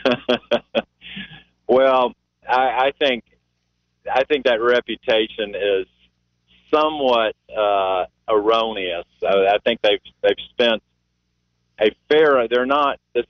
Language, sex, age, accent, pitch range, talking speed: English, male, 40-59, American, 95-140 Hz, 95 wpm